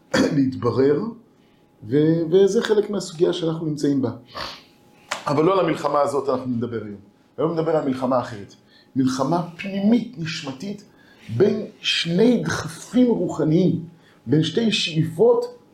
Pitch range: 145-225 Hz